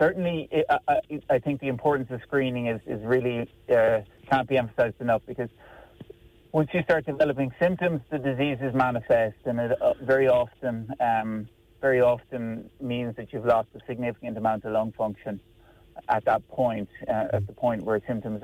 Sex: male